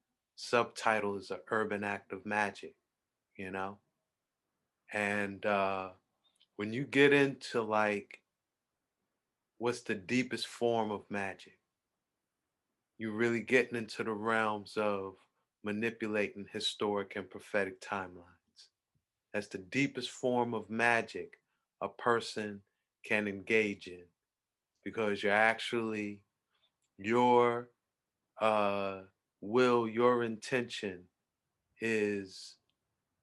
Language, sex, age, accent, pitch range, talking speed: English, male, 30-49, American, 100-120 Hz, 100 wpm